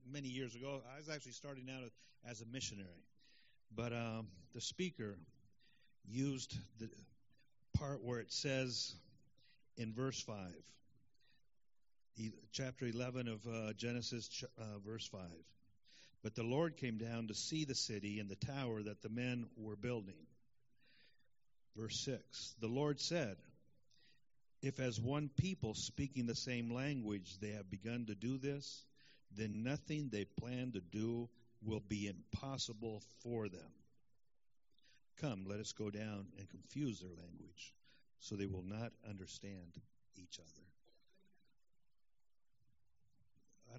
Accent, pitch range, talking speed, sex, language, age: American, 105-130 Hz, 130 wpm, male, English, 50-69